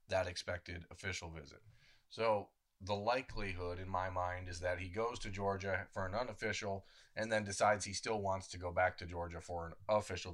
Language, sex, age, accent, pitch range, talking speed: English, male, 30-49, American, 90-105 Hz, 190 wpm